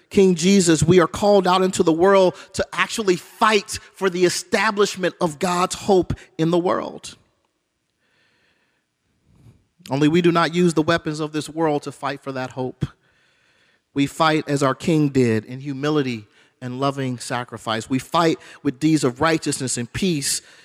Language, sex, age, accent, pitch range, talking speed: English, male, 40-59, American, 130-165 Hz, 160 wpm